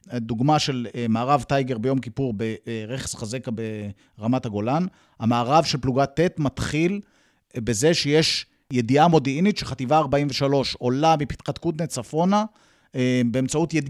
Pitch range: 125-155 Hz